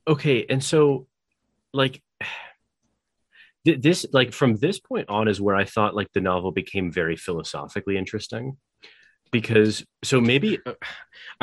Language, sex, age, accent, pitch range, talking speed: English, male, 30-49, American, 95-130 Hz, 135 wpm